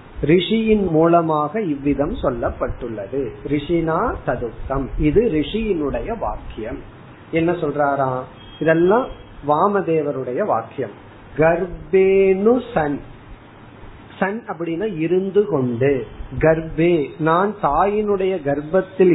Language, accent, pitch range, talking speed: Tamil, native, 130-180 Hz, 65 wpm